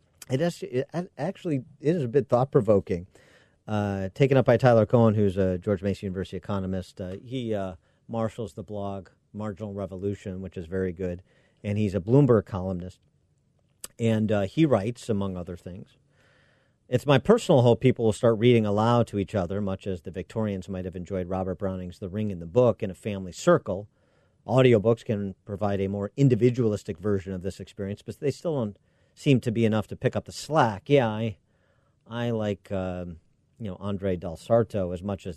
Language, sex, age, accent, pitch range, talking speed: English, male, 40-59, American, 95-120 Hz, 185 wpm